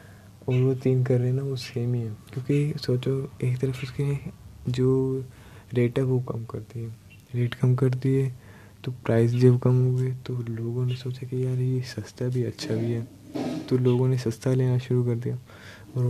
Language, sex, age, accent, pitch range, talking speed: Hindi, male, 20-39, native, 115-130 Hz, 200 wpm